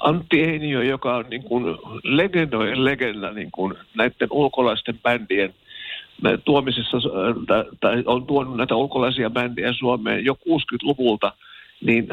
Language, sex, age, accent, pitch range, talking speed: Finnish, male, 50-69, native, 120-150 Hz, 120 wpm